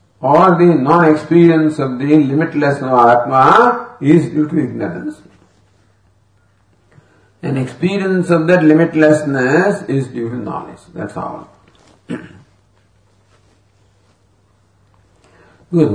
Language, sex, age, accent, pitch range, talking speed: English, male, 50-69, Indian, 105-155 Hz, 90 wpm